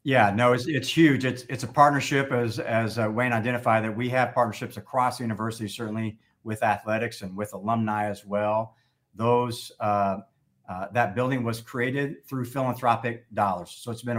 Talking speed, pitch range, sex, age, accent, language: 180 wpm, 110-130 Hz, male, 50-69, American, English